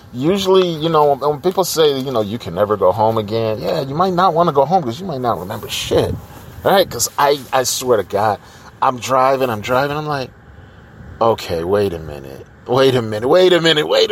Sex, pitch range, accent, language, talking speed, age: male, 105-145 Hz, American, English, 220 wpm, 30-49